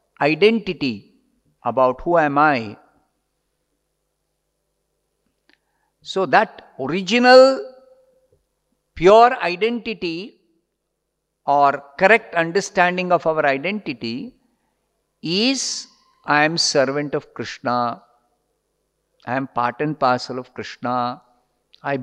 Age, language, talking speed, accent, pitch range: 50-69, English, 80 wpm, Indian, 130-205 Hz